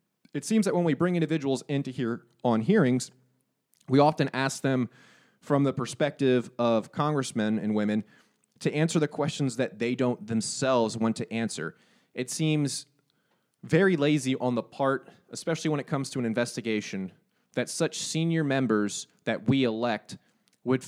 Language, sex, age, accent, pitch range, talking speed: English, male, 30-49, American, 120-145 Hz, 160 wpm